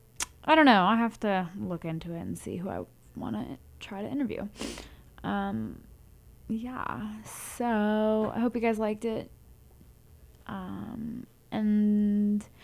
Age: 10-29